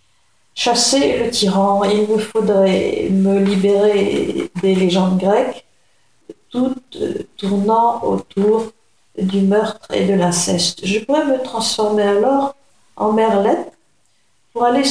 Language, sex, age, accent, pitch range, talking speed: French, female, 50-69, French, 195-235 Hz, 115 wpm